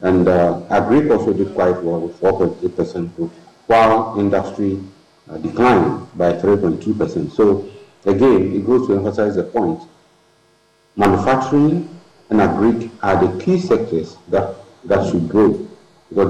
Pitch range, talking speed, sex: 95-115 Hz, 135 wpm, male